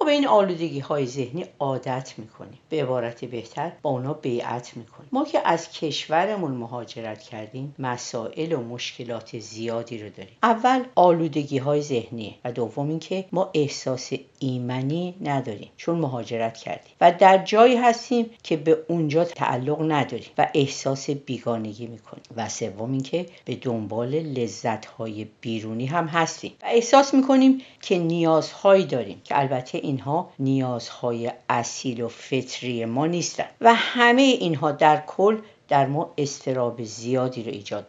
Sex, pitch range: female, 130-195 Hz